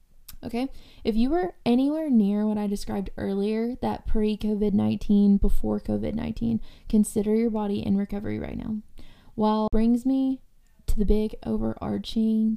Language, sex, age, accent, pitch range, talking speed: English, female, 20-39, American, 205-235 Hz, 140 wpm